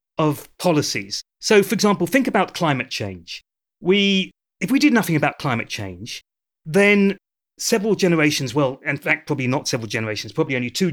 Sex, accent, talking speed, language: male, British, 165 wpm, English